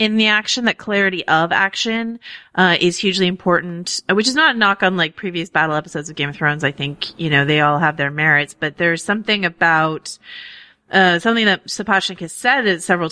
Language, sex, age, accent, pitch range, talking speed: English, female, 30-49, American, 165-210 Hz, 205 wpm